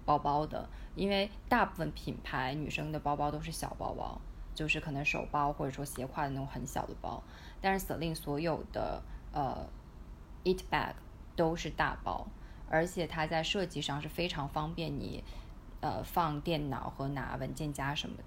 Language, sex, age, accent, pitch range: Chinese, female, 20-39, native, 135-160 Hz